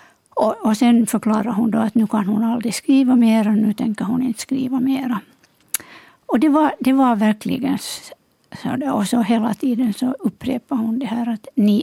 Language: Finnish